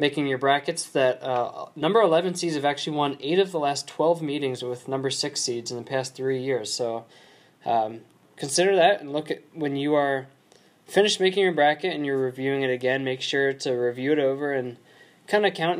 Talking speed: 210 wpm